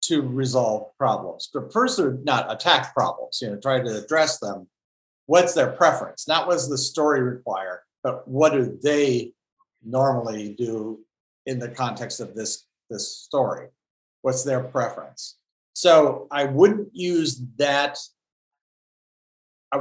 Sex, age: male, 50-69